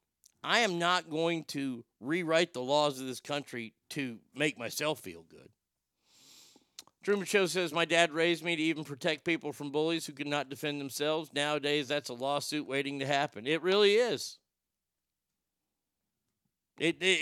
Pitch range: 125-170 Hz